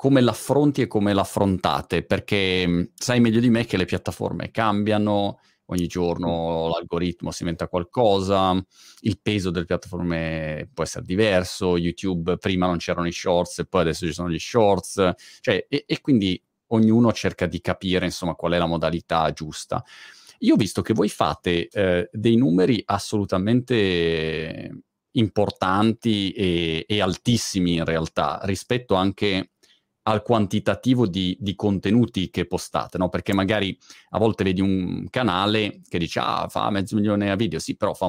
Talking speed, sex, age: 155 wpm, male, 30-49